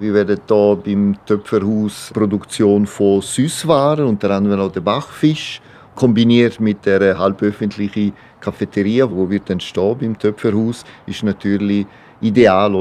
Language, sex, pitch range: German, male, 100-115 Hz